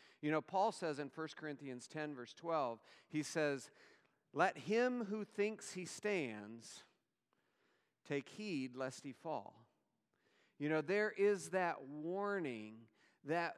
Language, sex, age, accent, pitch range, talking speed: English, male, 40-59, American, 135-185 Hz, 135 wpm